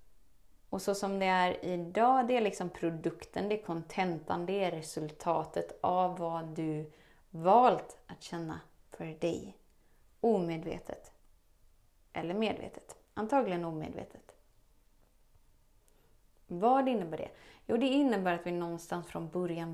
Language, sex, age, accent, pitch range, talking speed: Swedish, female, 30-49, native, 170-200 Hz, 120 wpm